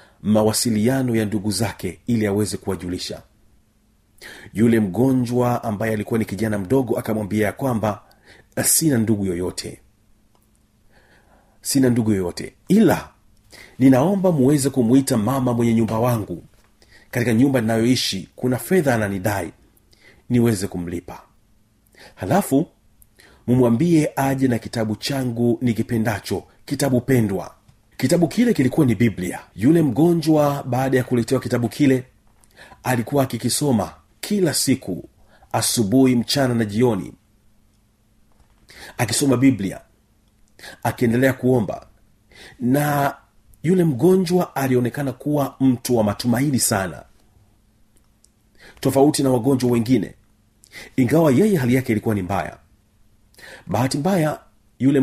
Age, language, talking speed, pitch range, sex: 40-59, Swahili, 100 wpm, 105-130 Hz, male